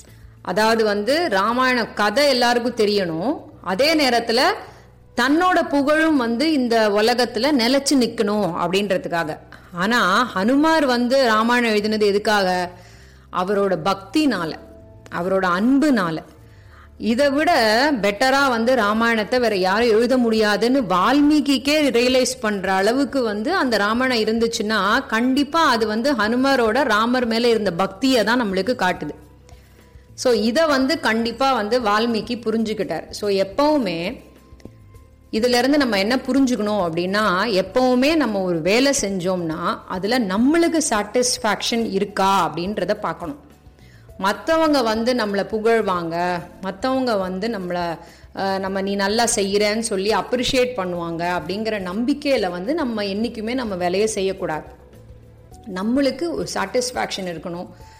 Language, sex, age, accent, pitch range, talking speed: Tamil, female, 30-49, native, 190-255 Hz, 95 wpm